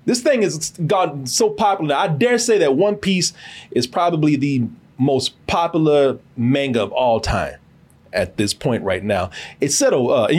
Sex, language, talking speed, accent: male, English, 175 wpm, American